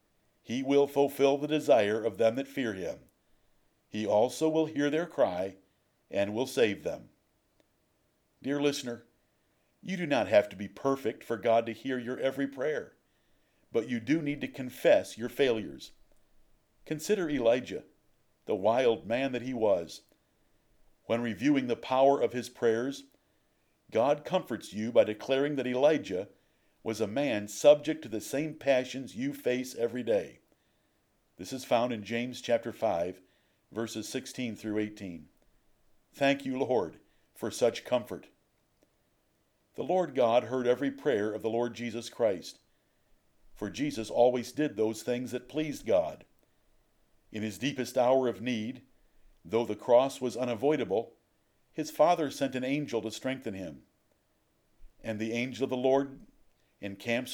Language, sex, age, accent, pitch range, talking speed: English, male, 50-69, American, 110-140 Hz, 150 wpm